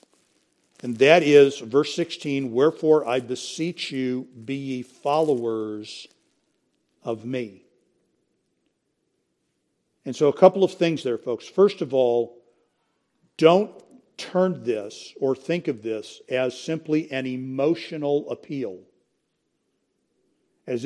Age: 50-69